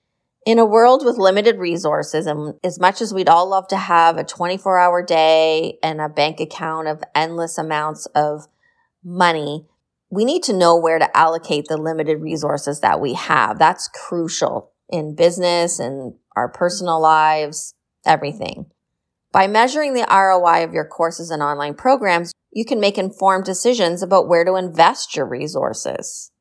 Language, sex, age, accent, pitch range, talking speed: English, female, 30-49, American, 155-190 Hz, 160 wpm